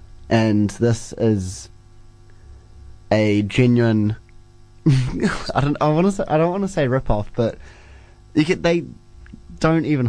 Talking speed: 130 wpm